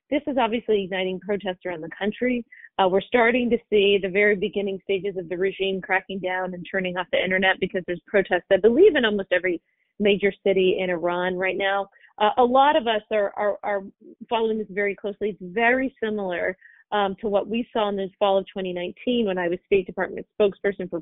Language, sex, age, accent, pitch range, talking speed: English, female, 30-49, American, 185-215 Hz, 210 wpm